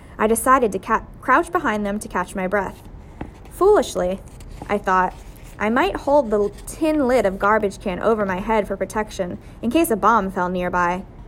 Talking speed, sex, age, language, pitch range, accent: 180 wpm, female, 20-39, English, 190-260 Hz, American